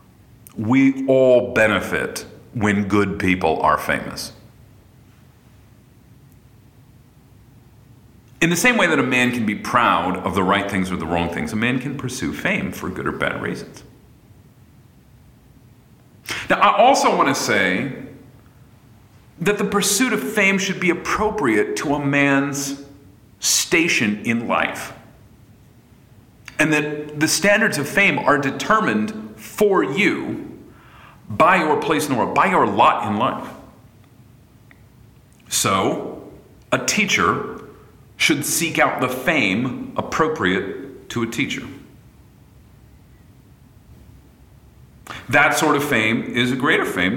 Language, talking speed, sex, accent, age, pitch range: English, 125 wpm, male, American, 40-59, 115-145 Hz